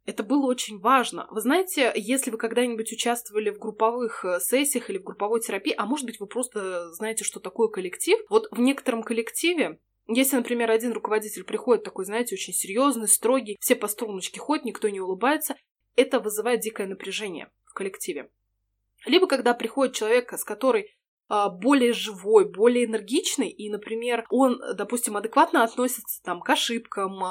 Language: Russian